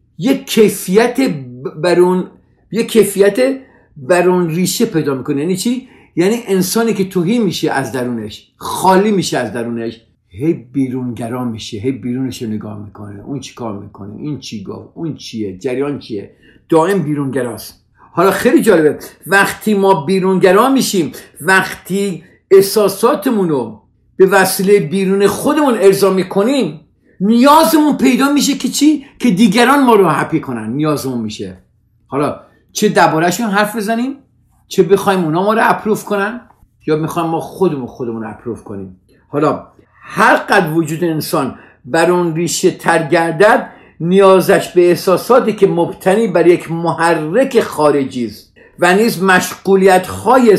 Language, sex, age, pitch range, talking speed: Persian, male, 50-69, 135-200 Hz, 130 wpm